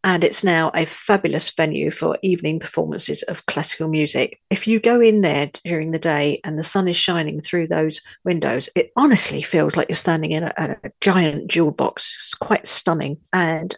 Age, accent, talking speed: 50-69, British, 190 wpm